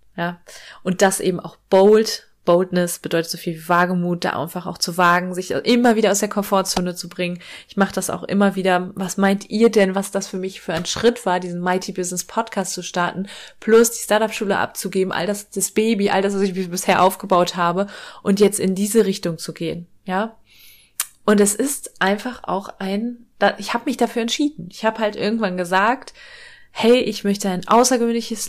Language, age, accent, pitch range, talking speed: German, 20-39, German, 180-220 Hz, 190 wpm